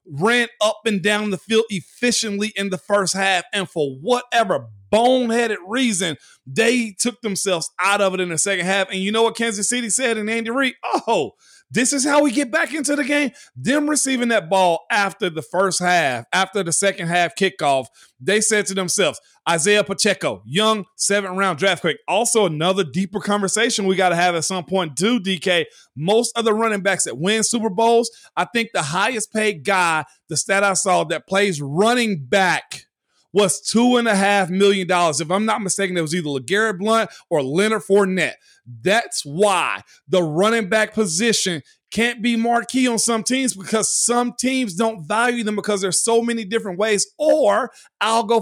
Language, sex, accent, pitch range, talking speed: English, male, American, 185-225 Hz, 185 wpm